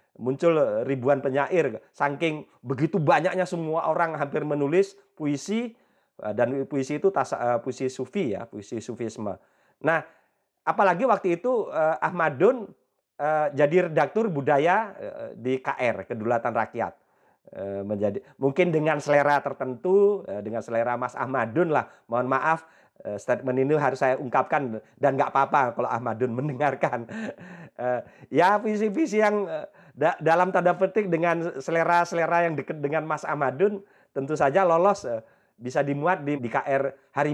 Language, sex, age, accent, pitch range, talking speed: Indonesian, male, 40-59, native, 135-175 Hz, 120 wpm